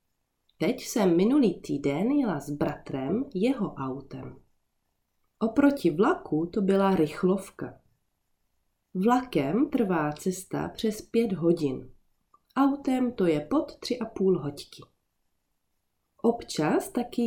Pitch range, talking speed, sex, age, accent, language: 155-230 Hz, 105 wpm, female, 30-49, native, Czech